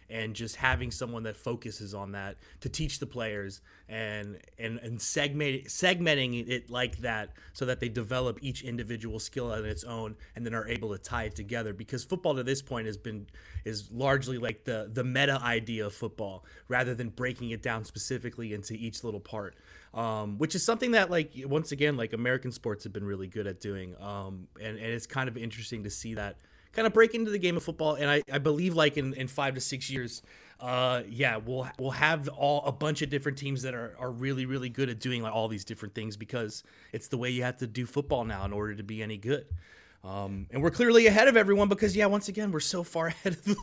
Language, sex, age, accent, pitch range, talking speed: English, male, 30-49, American, 110-150 Hz, 230 wpm